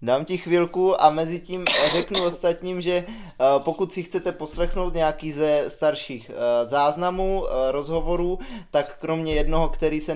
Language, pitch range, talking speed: Czech, 140-165 Hz, 135 wpm